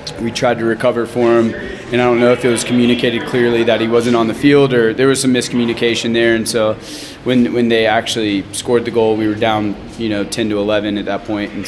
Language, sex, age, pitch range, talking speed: English, male, 20-39, 105-120 Hz, 245 wpm